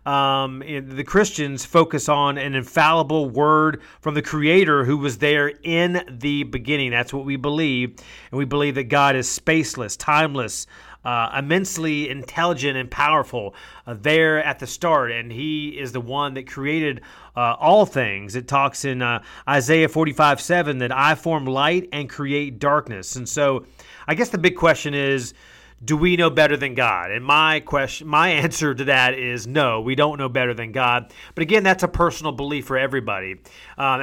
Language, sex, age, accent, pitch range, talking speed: English, male, 30-49, American, 125-150 Hz, 180 wpm